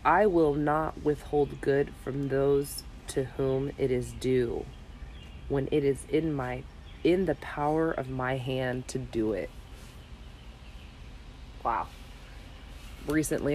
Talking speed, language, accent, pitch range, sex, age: 125 wpm, English, American, 90-140 Hz, female, 30-49